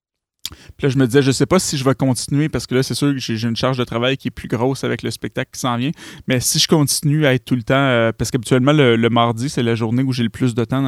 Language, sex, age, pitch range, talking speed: French, male, 30-49, 110-135 Hz, 320 wpm